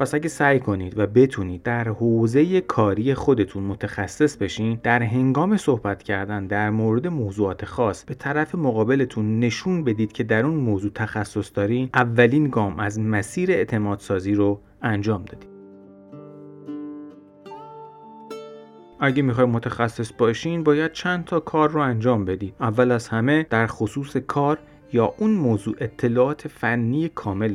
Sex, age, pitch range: male, 30-49, 100-135 Hz